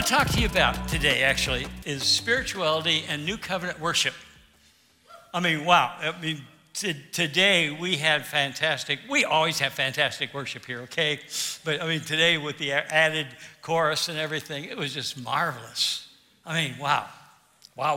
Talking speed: 155 wpm